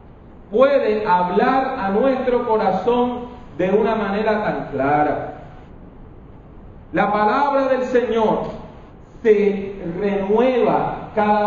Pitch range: 200-260 Hz